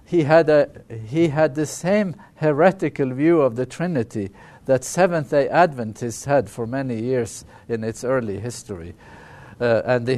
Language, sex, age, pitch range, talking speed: English, male, 50-69, 115-155 Hz, 155 wpm